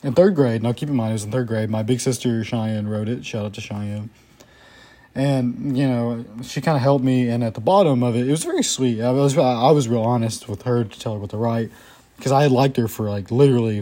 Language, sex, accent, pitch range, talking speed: English, male, American, 110-135 Hz, 270 wpm